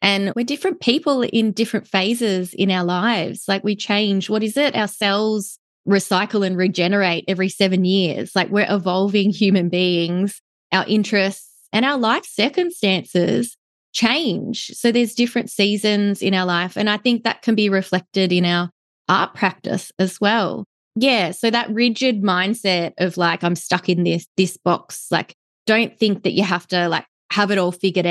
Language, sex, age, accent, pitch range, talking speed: English, female, 20-39, Australian, 175-210 Hz, 175 wpm